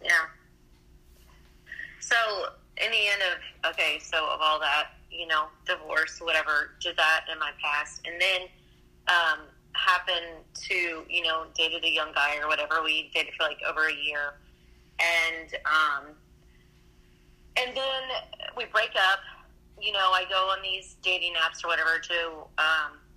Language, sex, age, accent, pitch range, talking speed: English, female, 30-49, American, 155-180 Hz, 155 wpm